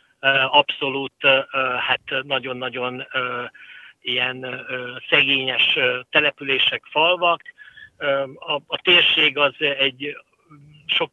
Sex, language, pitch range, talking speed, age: male, Hungarian, 135-155 Hz, 70 wpm, 60-79